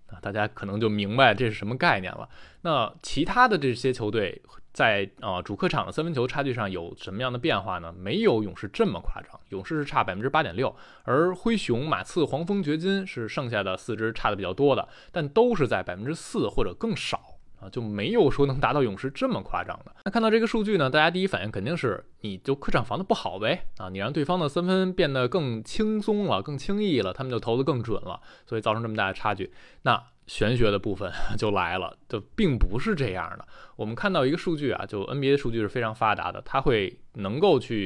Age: 20-39